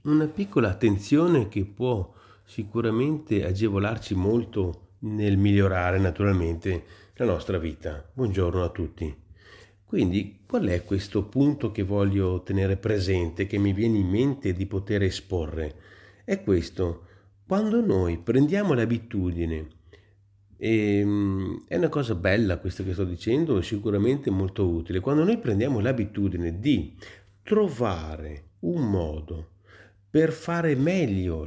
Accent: native